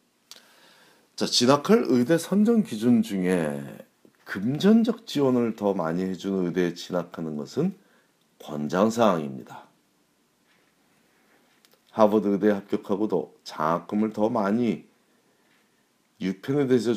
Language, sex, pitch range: Korean, male, 85-125 Hz